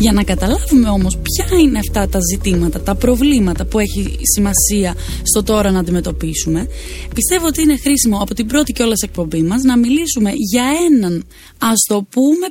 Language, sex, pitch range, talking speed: Greek, female, 185-255 Hz, 170 wpm